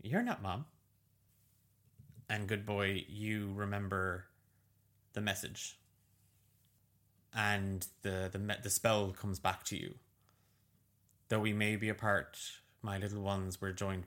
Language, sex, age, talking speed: English, male, 20-39, 130 wpm